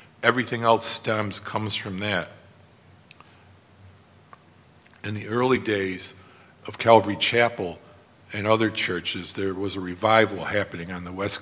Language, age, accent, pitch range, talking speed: English, 50-69, American, 95-115 Hz, 125 wpm